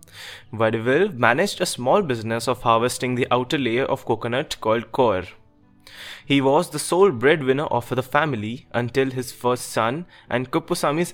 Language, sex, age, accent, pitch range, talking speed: English, male, 20-39, Indian, 120-145 Hz, 150 wpm